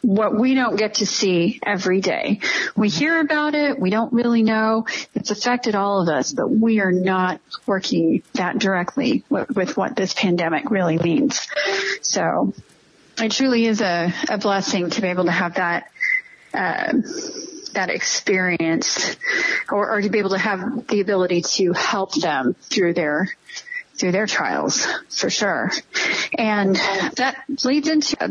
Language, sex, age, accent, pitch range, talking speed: English, female, 30-49, American, 195-275 Hz, 155 wpm